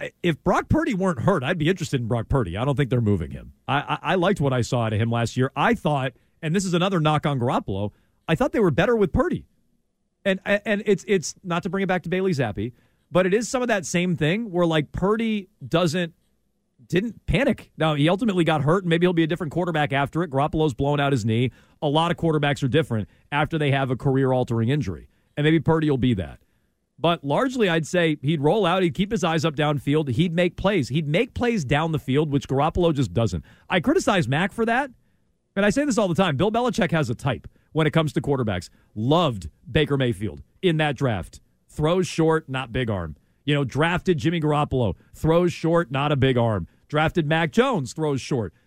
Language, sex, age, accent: English, male, 40-59, American